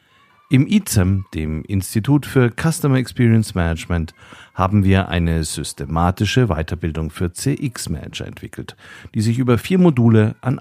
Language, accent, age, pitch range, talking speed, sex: German, German, 50-69, 90-125 Hz, 125 wpm, male